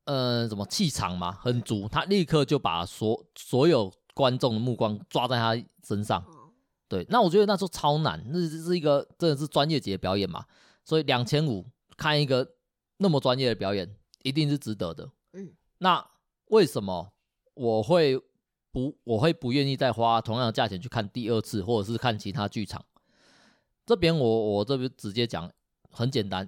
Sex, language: male, Chinese